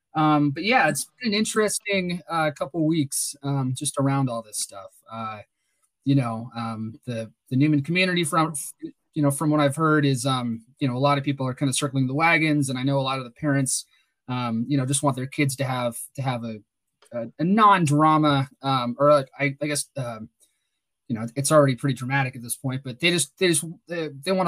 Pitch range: 125-150 Hz